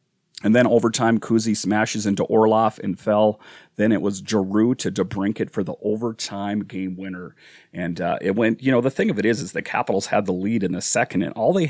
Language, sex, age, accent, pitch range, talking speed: English, male, 40-59, American, 100-115 Hz, 220 wpm